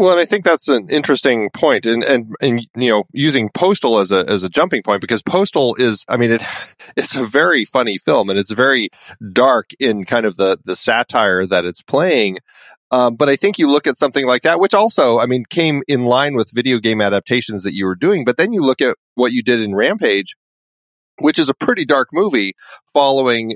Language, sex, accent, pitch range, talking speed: English, male, American, 120-175 Hz, 220 wpm